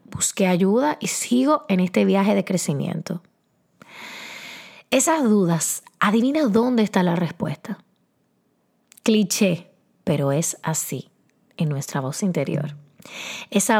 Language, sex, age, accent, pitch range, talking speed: Spanish, female, 20-39, American, 180-230 Hz, 110 wpm